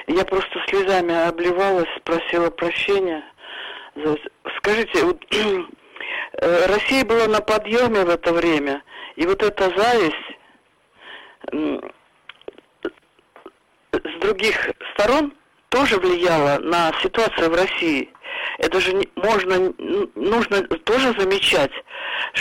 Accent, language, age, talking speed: native, Russian, 50-69, 90 wpm